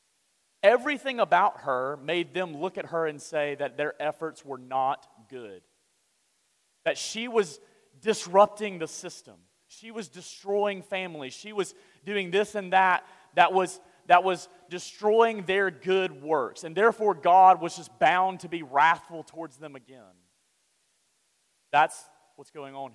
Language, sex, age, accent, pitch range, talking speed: English, male, 30-49, American, 170-240 Hz, 145 wpm